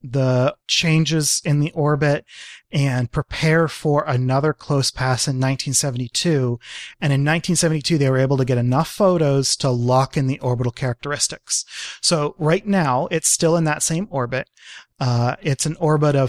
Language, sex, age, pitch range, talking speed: English, male, 30-49, 130-165 Hz, 160 wpm